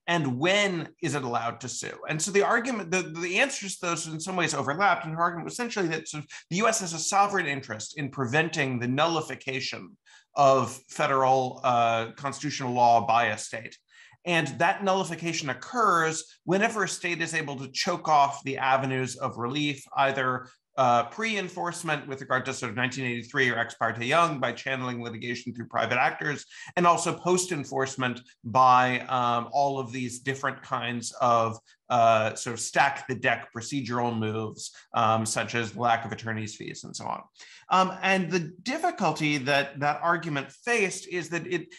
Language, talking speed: English, 175 wpm